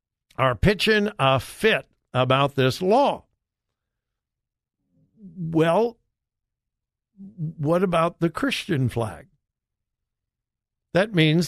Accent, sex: American, male